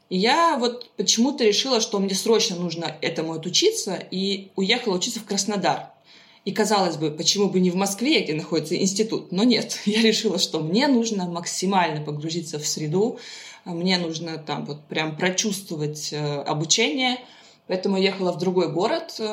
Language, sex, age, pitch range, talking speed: Russian, female, 20-39, 175-220 Hz, 160 wpm